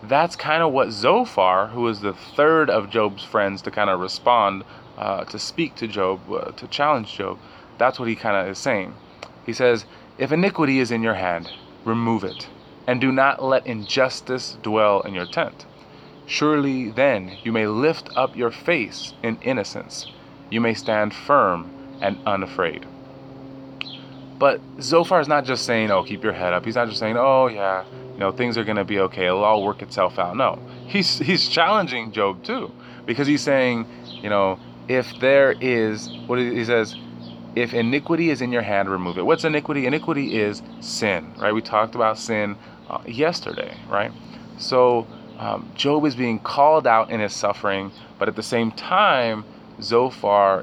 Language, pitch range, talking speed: English, 100-135 Hz, 175 wpm